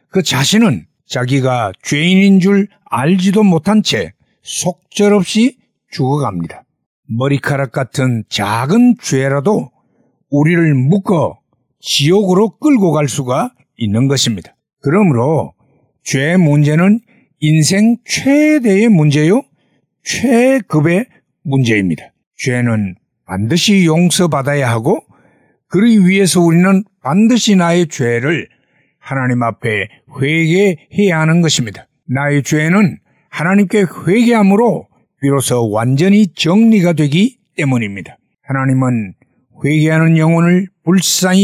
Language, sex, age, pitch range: Korean, male, 60-79, 135-195 Hz